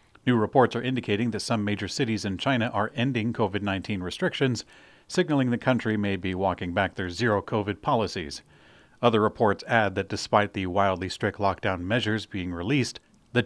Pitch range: 95-120 Hz